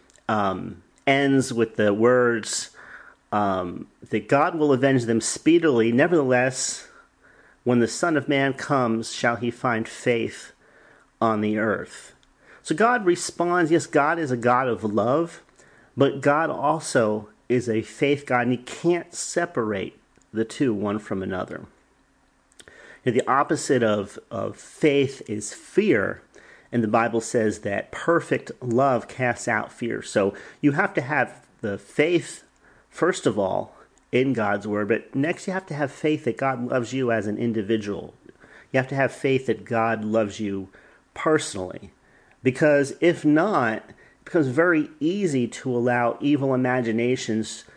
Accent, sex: American, male